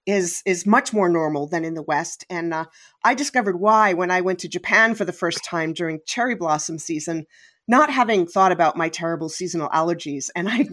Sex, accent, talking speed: female, American, 205 wpm